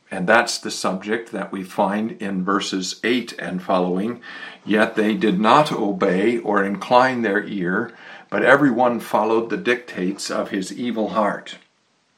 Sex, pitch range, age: male, 100-115 Hz, 60-79